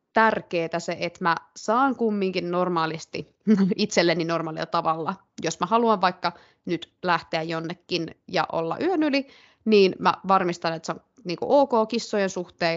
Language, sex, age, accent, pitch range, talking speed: Finnish, female, 20-39, native, 170-225 Hz, 140 wpm